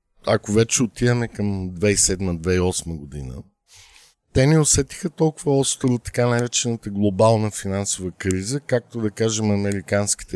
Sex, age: male, 50-69